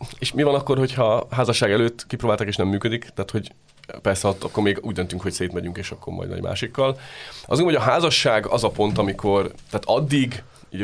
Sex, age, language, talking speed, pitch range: male, 30-49, Hungarian, 205 wpm, 90-105 Hz